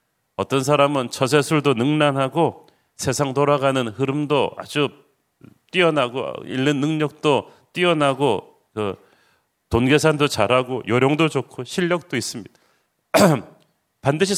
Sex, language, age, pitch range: male, Korean, 40-59, 125-160 Hz